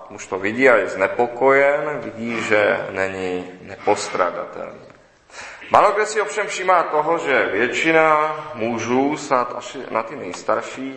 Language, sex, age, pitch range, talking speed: Czech, male, 30-49, 105-130 Hz, 125 wpm